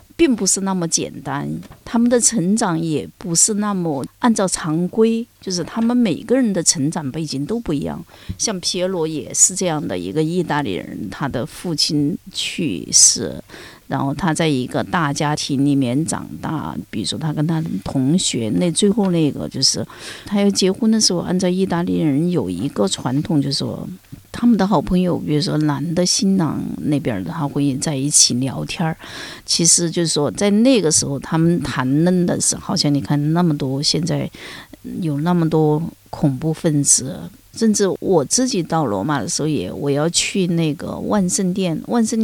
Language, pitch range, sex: Chinese, 145-195 Hz, female